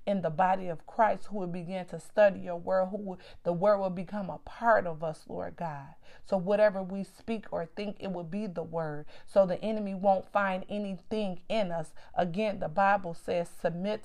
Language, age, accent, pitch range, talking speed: English, 40-59, American, 170-200 Hz, 205 wpm